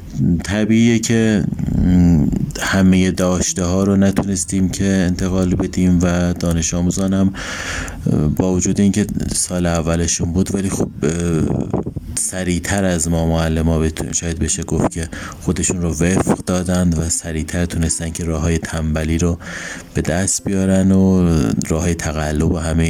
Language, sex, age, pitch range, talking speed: Persian, male, 30-49, 80-95 Hz, 130 wpm